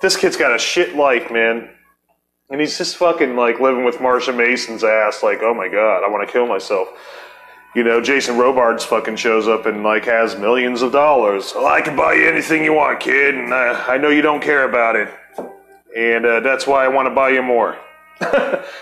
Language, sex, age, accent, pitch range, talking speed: English, male, 30-49, American, 120-160 Hz, 215 wpm